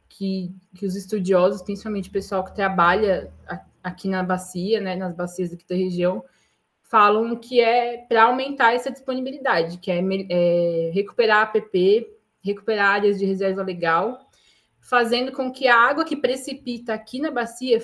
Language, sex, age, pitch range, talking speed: Portuguese, female, 20-39, 190-240 Hz, 155 wpm